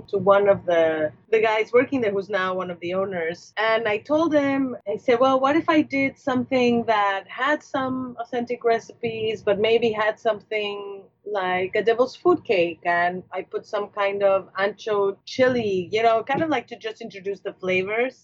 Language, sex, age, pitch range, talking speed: English, female, 30-49, 180-235 Hz, 190 wpm